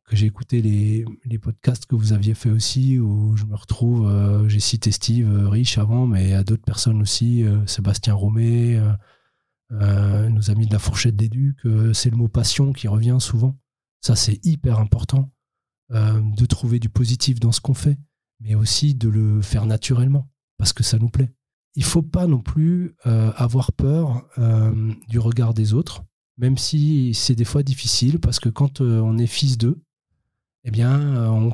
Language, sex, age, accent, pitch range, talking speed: French, male, 20-39, French, 110-130 Hz, 190 wpm